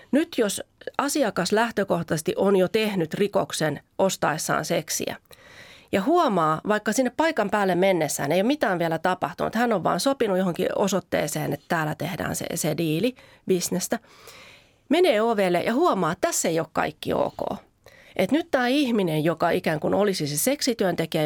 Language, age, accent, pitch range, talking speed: Finnish, 30-49, native, 175-235 Hz, 155 wpm